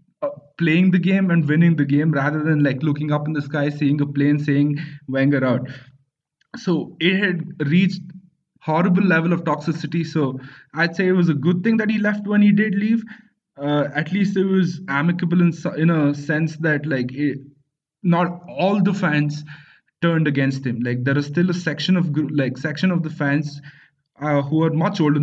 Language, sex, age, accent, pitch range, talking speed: English, male, 20-39, Indian, 145-175 Hz, 195 wpm